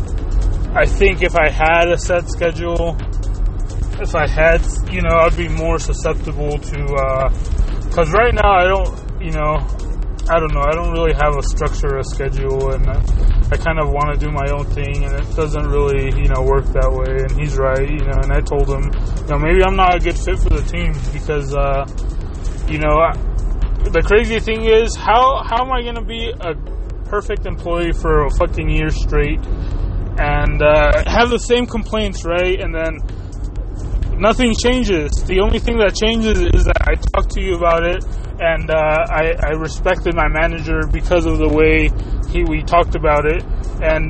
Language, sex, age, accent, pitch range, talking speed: English, male, 20-39, American, 130-170 Hz, 190 wpm